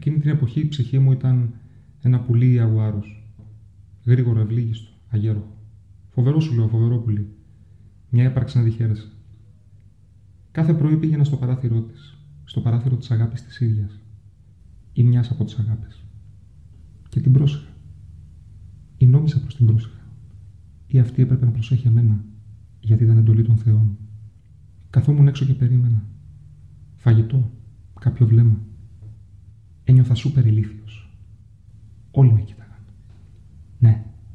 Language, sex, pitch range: Greek, male, 105-120 Hz